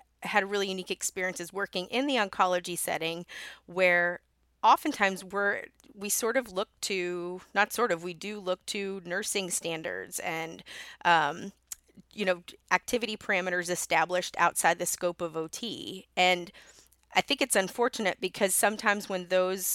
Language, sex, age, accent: English, female, 30-49, American